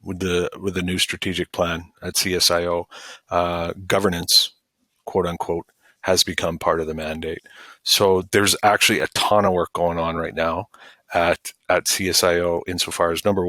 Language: English